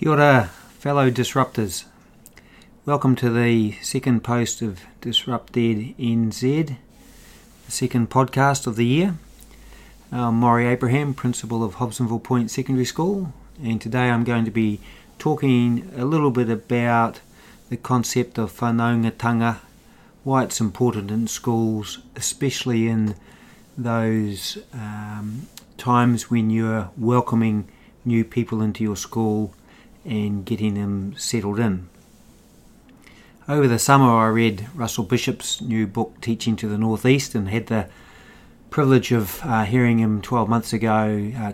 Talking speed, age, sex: 130 wpm, 40-59, male